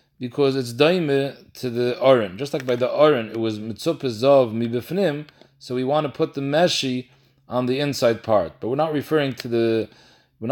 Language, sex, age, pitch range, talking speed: English, male, 30-49, 115-140 Hz, 200 wpm